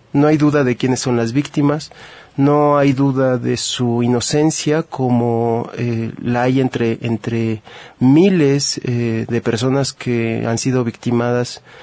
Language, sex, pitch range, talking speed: Spanish, male, 115-135 Hz, 140 wpm